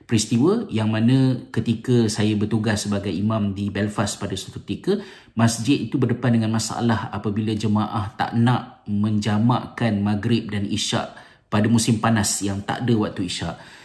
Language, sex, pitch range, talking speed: Malay, male, 100-115 Hz, 145 wpm